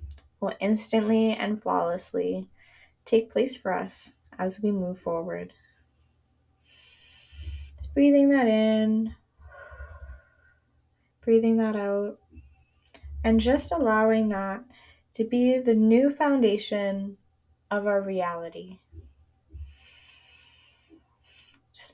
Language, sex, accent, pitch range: English, female, American, 185-230 Hz